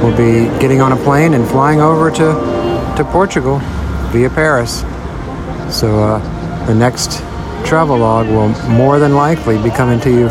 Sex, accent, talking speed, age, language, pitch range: male, American, 165 wpm, 60-79, English, 105-130 Hz